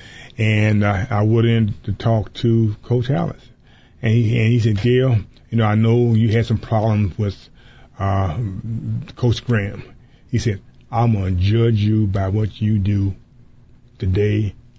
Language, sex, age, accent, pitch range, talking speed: English, male, 30-49, American, 105-125 Hz, 160 wpm